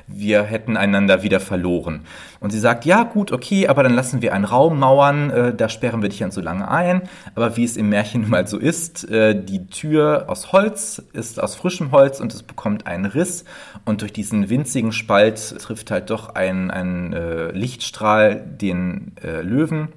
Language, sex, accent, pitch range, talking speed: German, male, German, 100-125 Hz, 195 wpm